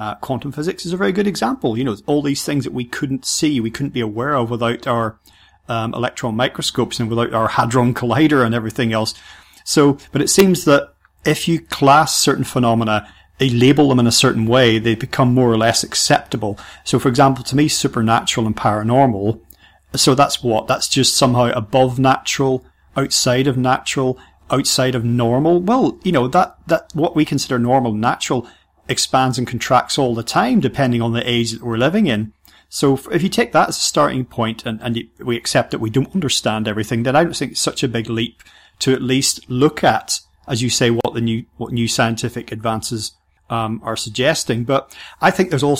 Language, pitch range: English, 115-140 Hz